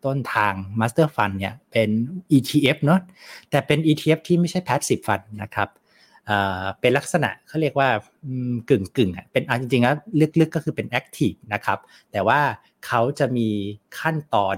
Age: 60-79